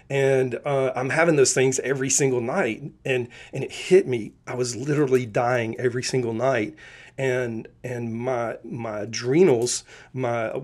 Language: English